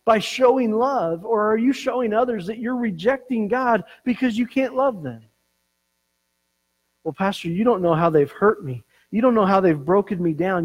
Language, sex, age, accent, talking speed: English, male, 50-69, American, 190 wpm